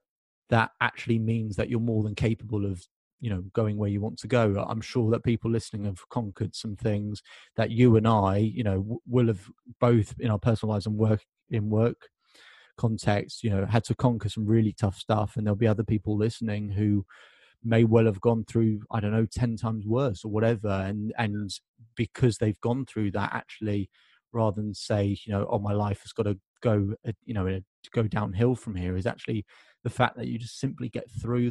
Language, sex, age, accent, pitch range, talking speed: English, male, 30-49, British, 105-120 Hz, 215 wpm